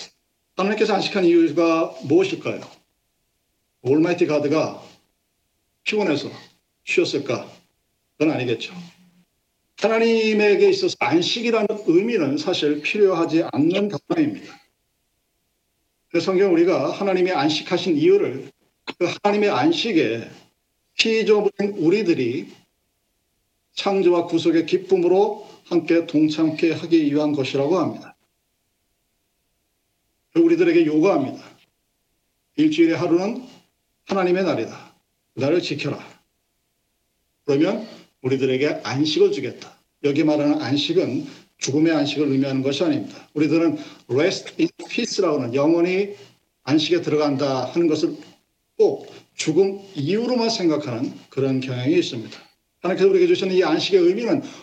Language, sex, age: Korean, male, 50-69